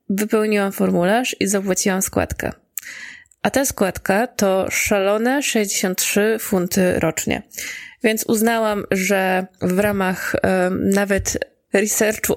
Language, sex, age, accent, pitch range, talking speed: Polish, female, 20-39, native, 185-240 Hz, 95 wpm